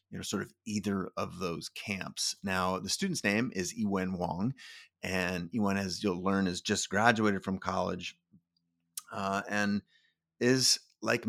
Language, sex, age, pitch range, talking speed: English, male, 30-49, 95-115 Hz, 155 wpm